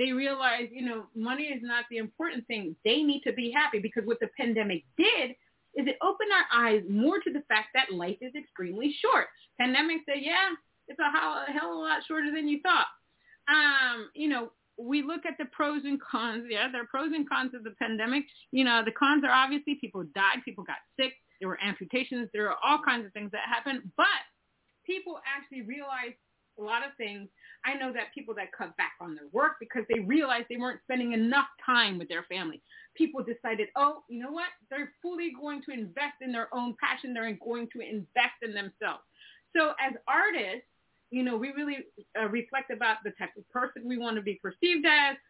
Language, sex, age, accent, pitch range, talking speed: English, female, 30-49, American, 220-290 Hz, 210 wpm